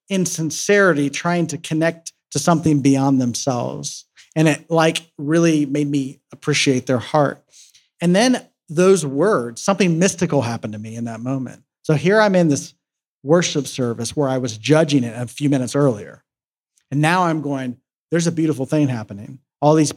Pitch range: 135-160 Hz